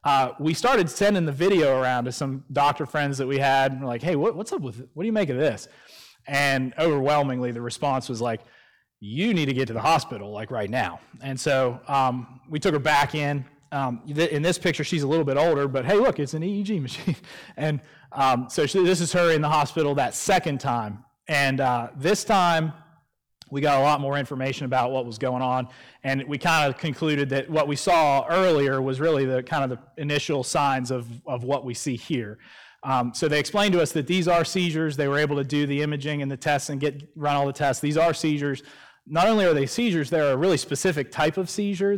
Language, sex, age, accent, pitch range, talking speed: English, male, 30-49, American, 135-165 Hz, 230 wpm